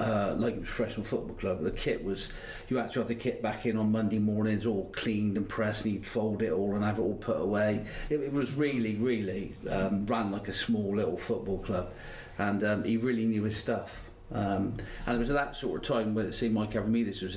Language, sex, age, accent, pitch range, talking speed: English, male, 40-59, British, 100-115 Hz, 240 wpm